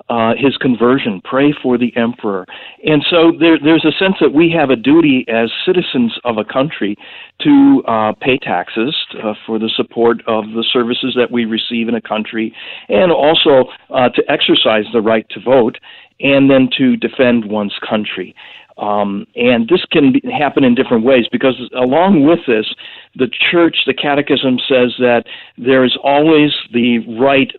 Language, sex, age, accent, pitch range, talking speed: English, male, 50-69, American, 115-140 Hz, 170 wpm